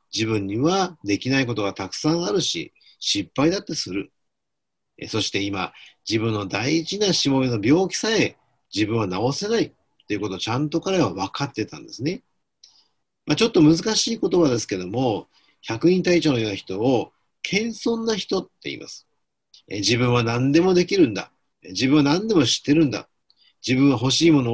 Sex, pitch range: male, 110-170 Hz